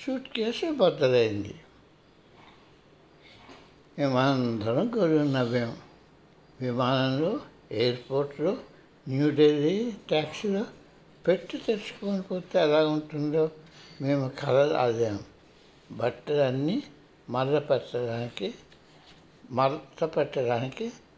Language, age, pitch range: Telugu, 60-79, 130-180 Hz